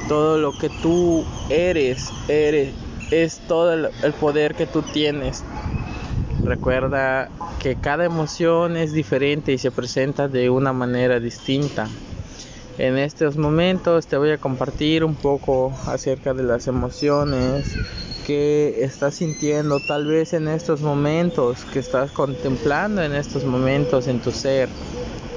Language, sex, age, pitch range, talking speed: Spanish, male, 20-39, 130-155 Hz, 135 wpm